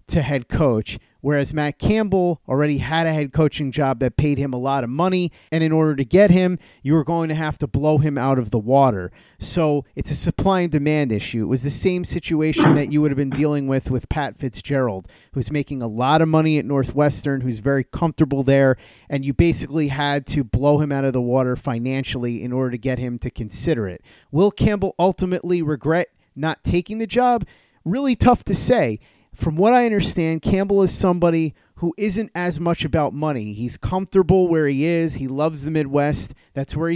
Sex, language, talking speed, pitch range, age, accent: male, English, 205 wpm, 130-160 Hz, 30-49, American